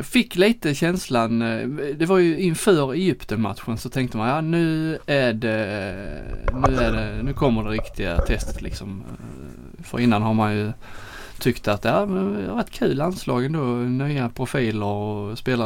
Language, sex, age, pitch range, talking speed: Swedish, male, 20-39, 110-140 Hz, 160 wpm